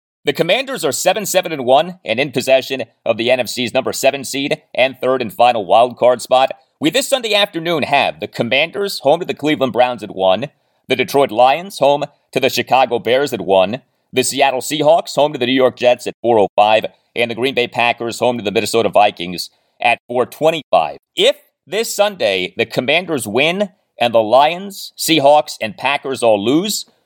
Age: 30-49